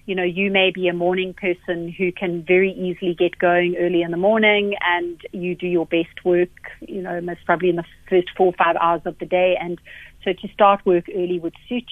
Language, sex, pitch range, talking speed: English, female, 175-195 Hz, 230 wpm